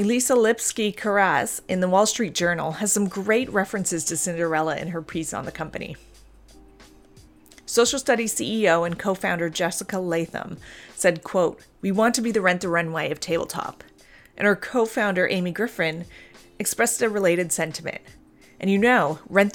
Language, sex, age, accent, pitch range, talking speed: English, female, 30-49, American, 170-210 Hz, 155 wpm